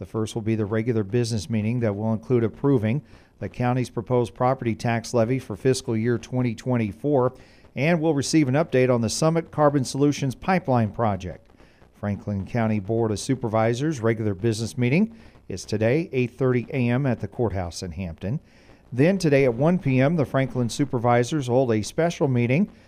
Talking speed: 165 wpm